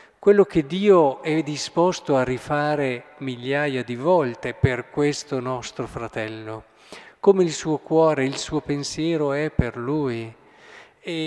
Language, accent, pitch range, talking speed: Italian, native, 120-160 Hz, 135 wpm